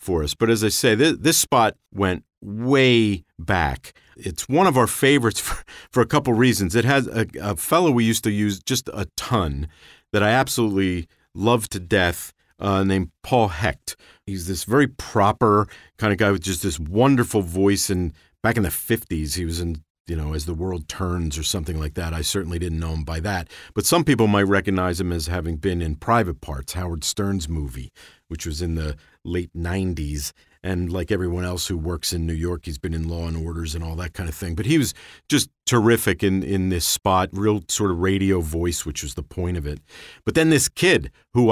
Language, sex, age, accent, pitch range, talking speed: English, male, 50-69, American, 85-115 Hz, 215 wpm